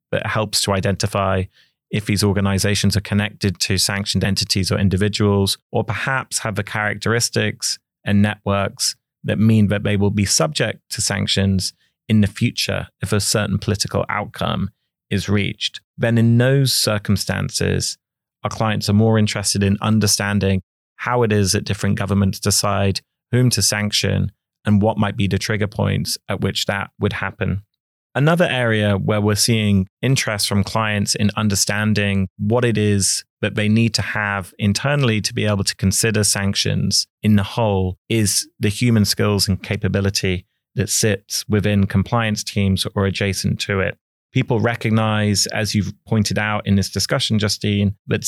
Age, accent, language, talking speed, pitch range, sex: 30-49, British, English, 160 wpm, 100-110 Hz, male